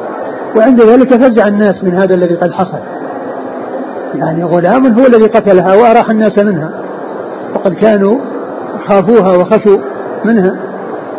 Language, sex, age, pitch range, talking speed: Arabic, male, 50-69, 195-235 Hz, 120 wpm